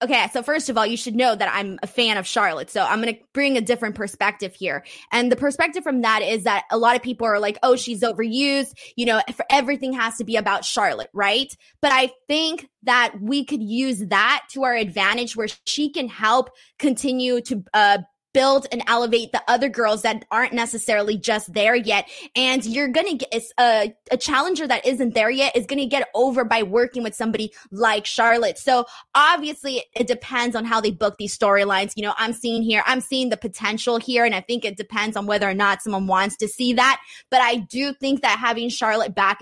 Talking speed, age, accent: 215 wpm, 20-39, American